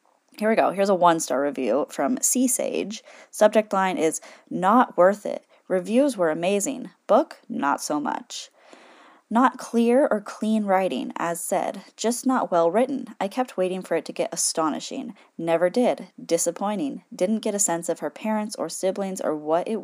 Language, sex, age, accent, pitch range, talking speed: English, female, 10-29, American, 185-255 Hz, 170 wpm